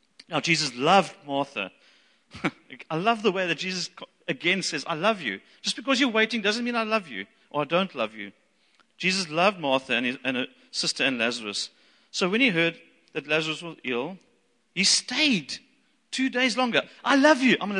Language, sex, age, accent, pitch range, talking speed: English, male, 40-59, British, 210-295 Hz, 190 wpm